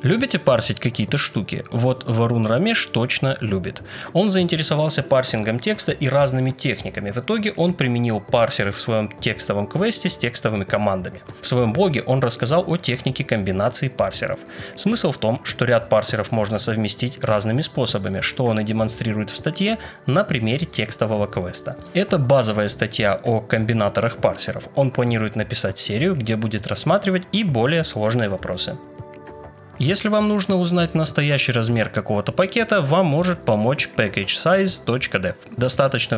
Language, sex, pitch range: Russian, male, 105-150 Hz